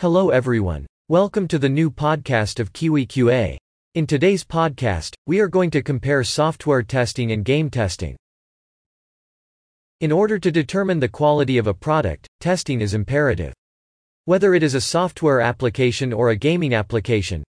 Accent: American